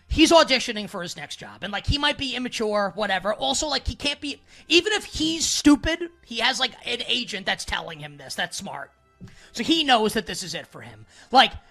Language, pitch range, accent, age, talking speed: English, 170-240 Hz, American, 30-49, 215 wpm